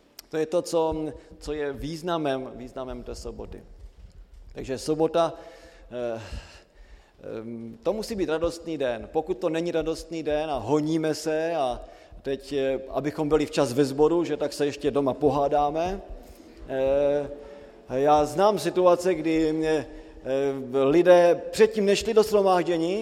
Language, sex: Slovak, male